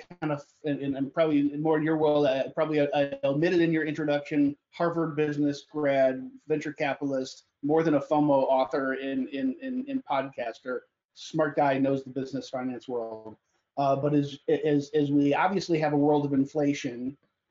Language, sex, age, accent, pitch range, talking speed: English, male, 30-49, American, 145-170 Hz, 170 wpm